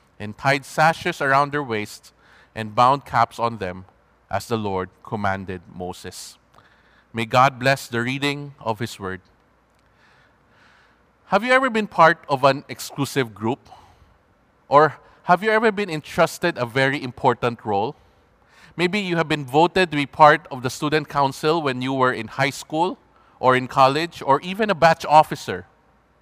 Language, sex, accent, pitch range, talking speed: English, male, Filipino, 130-175 Hz, 160 wpm